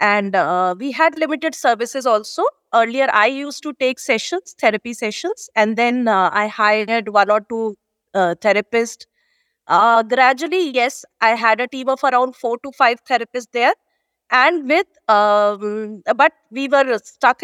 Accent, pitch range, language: Indian, 205-265 Hz, English